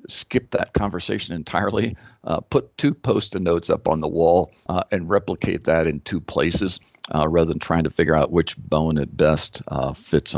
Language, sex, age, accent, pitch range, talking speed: English, male, 50-69, American, 75-95 Hz, 185 wpm